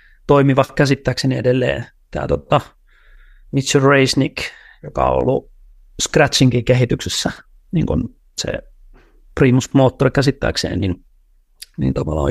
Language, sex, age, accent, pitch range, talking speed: Finnish, male, 30-49, native, 100-140 Hz, 95 wpm